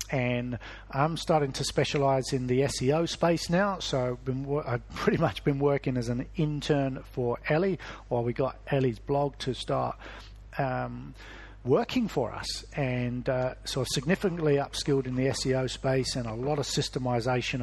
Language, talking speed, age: English, 160 wpm, 50-69